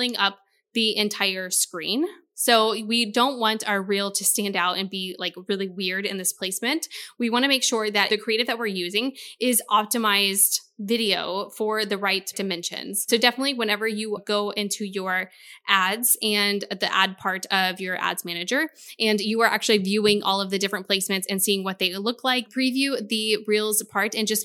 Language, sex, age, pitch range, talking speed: English, female, 10-29, 195-230 Hz, 190 wpm